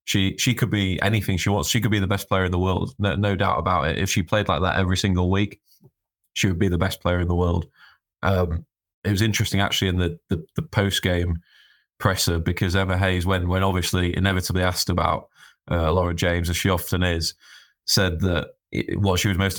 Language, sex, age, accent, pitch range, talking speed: English, male, 20-39, British, 90-100 Hz, 220 wpm